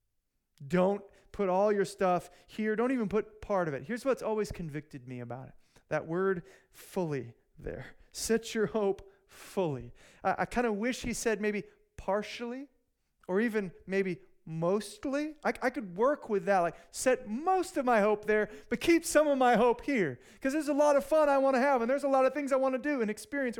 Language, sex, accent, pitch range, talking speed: English, male, American, 180-230 Hz, 205 wpm